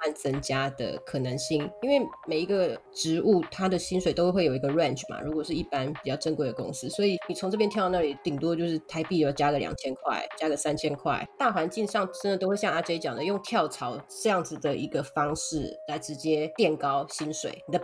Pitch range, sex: 155-195 Hz, female